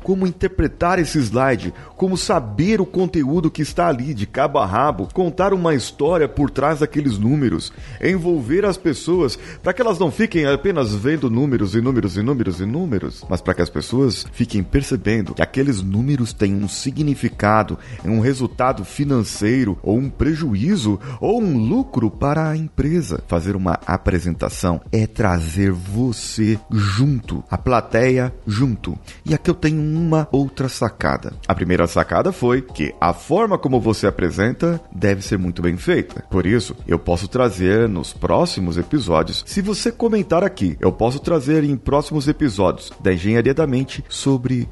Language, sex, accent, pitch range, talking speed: Portuguese, male, Brazilian, 100-150 Hz, 160 wpm